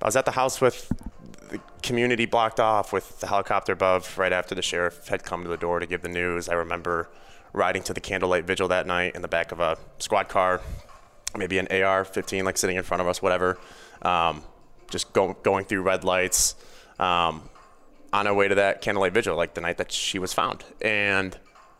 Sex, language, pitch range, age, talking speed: male, English, 90-100 Hz, 20-39, 205 wpm